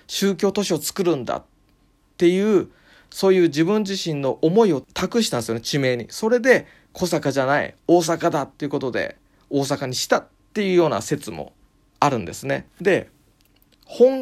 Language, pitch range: Japanese, 130-215 Hz